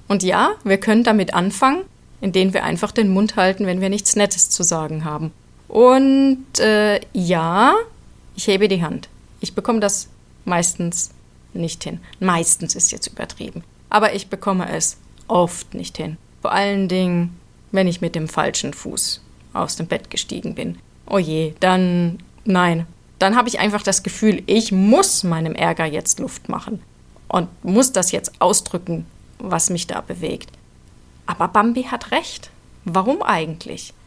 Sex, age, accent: female, 30-49, German